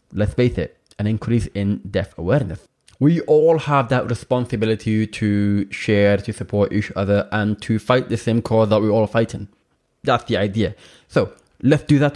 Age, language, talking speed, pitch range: 20-39, English, 185 wpm, 100-125 Hz